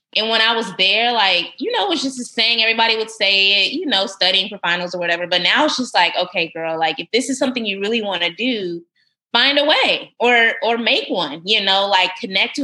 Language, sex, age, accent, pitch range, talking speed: English, female, 20-39, American, 165-220 Hz, 250 wpm